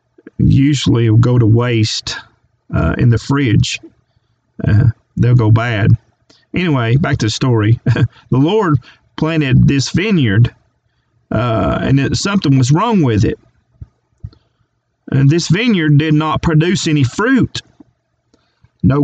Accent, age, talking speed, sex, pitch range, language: American, 40-59, 125 wpm, male, 120-155 Hz, English